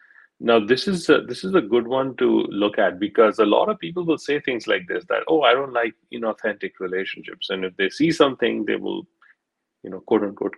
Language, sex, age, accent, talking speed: English, male, 40-59, Indian, 220 wpm